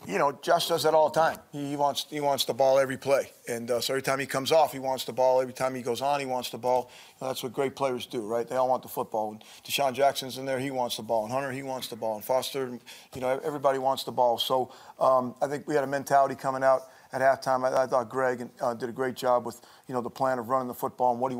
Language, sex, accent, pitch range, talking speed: English, male, American, 120-135 Hz, 305 wpm